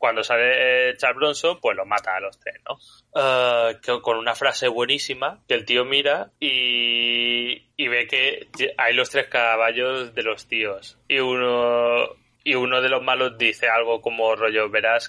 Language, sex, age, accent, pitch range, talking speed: Spanish, male, 20-39, Spanish, 115-160 Hz, 170 wpm